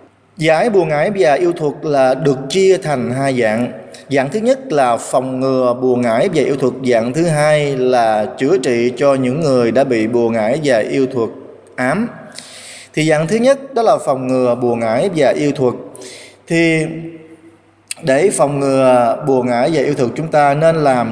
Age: 20-39